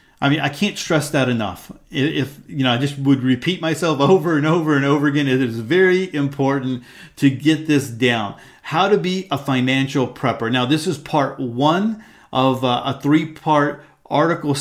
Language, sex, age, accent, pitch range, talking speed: English, male, 40-59, American, 130-155 Hz, 190 wpm